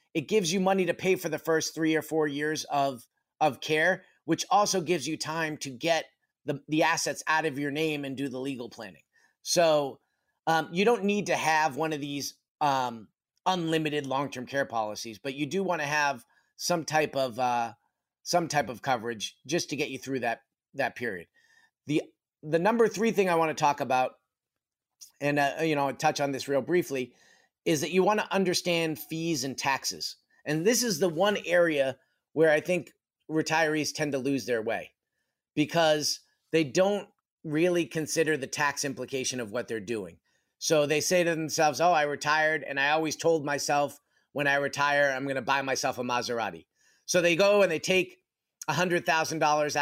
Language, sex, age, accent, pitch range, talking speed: English, male, 30-49, American, 135-165 Hz, 190 wpm